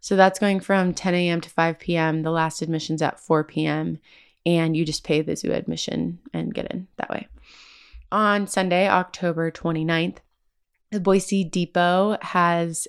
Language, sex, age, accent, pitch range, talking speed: English, female, 20-39, American, 160-180 Hz, 165 wpm